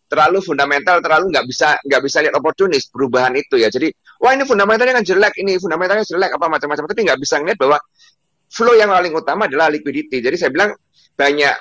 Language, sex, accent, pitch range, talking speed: Indonesian, male, native, 140-220 Hz, 195 wpm